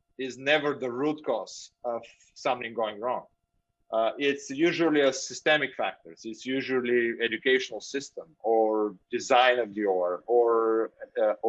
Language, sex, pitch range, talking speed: English, male, 115-140 Hz, 135 wpm